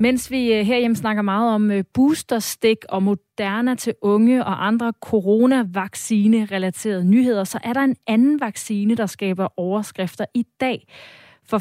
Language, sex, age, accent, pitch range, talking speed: Danish, female, 30-49, native, 185-230 Hz, 145 wpm